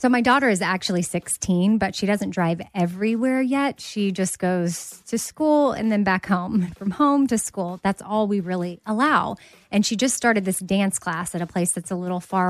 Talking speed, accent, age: 210 wpm, American, 30-49